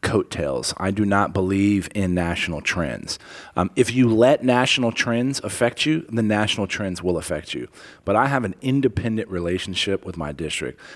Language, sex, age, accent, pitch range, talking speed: English, male, 40-59, American, 100-140 Hz, 170 wpm